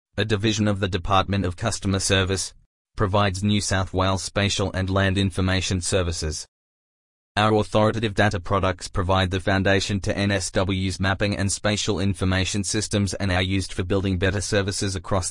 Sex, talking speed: male, 155 wpm